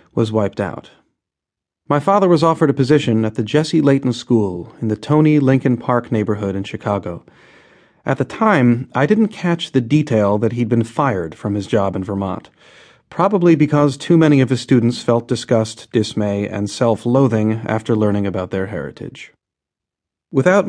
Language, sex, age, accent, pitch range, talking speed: English, male, 40-59, American, 110-140 Hz, 165 wpm